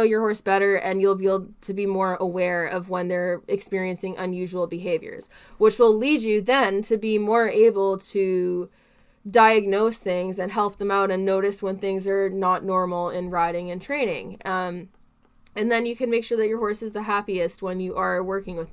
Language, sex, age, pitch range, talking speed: English, female, 20-39, 185-215 Hz, 200 wpm